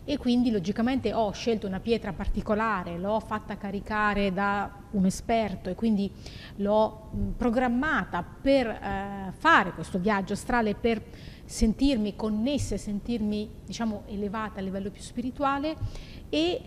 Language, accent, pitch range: Italian, native, 205-250 Hz